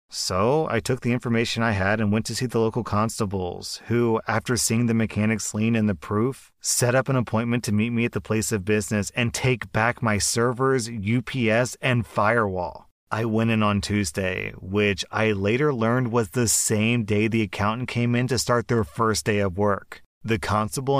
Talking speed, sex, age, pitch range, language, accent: 195 wpm, male, 30-49, 105-120 Hz, English, American